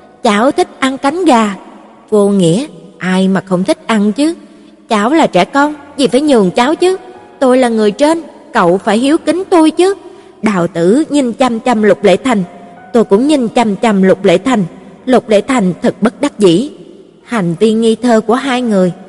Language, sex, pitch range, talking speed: Vietnamese, female, 195-265 Hz, 195 wpm